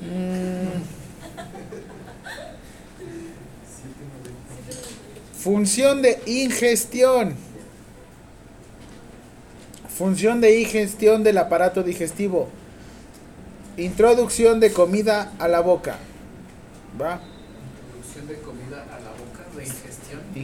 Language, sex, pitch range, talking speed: Spanish, male, 140-195 Hz, 70 wpm